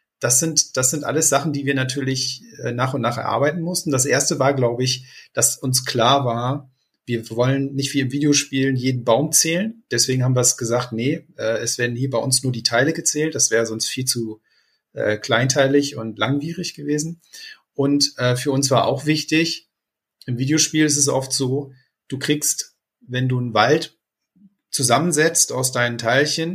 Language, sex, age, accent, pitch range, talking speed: German, male, 40-59, German, 120-150 Hz, 180 wpm